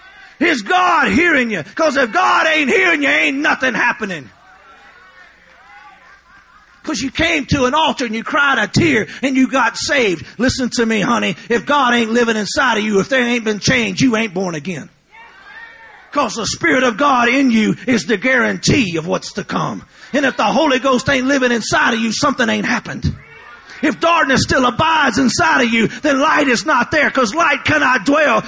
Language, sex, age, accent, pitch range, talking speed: English, male, 40-59, American, 230-315 Hz, 190 wpm